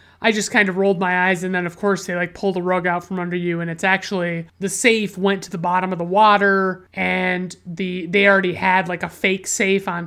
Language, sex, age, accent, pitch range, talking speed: English, male, 30-49, American, 180-205 Hz, 250 wpm